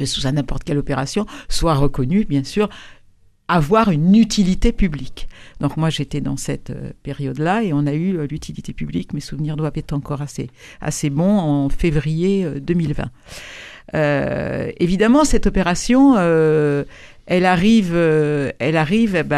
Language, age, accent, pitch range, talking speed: French, 60-79, French, 150-190 Hz, 140 wpm